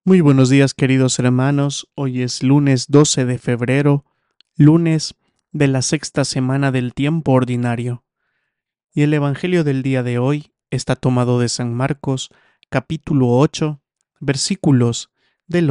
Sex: male